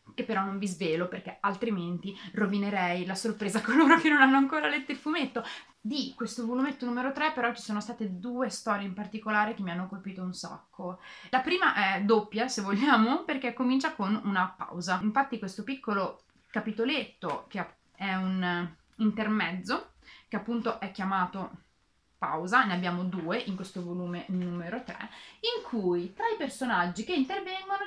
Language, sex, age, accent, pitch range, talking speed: Italian, female, 30-49, native, 185-255 Hz, 165 wpm